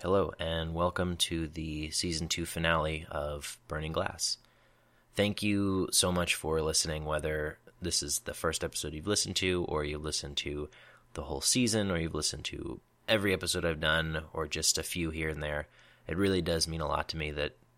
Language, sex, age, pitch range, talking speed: English, male, 20-39, 75-90 Hz, 190 wpm